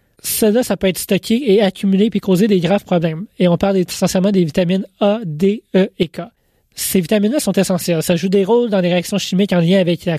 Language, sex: French, male